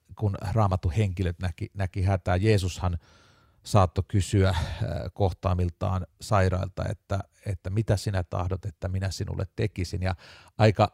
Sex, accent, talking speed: male, native, 120 wpm